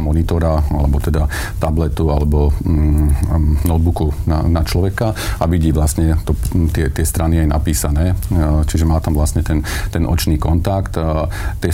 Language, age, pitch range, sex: Slovak, 40-59, 75-95 Hz, male